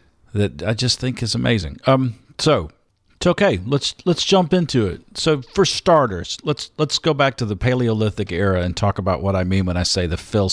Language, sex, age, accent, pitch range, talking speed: English, male, 50-69, American, 95-130 Hz, 205 wpm